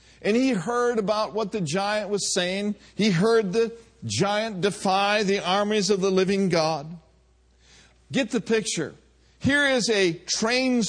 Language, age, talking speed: English, 50-69, 150 wpm